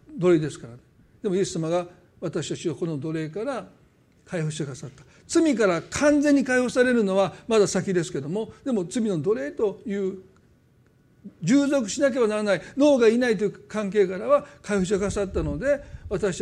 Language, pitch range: Japanese, 165-220 Hz